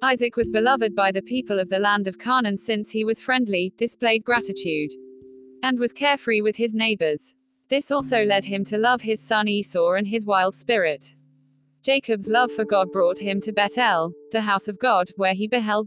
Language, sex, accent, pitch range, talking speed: English, female, British, 185-245 Hz, 195 wpm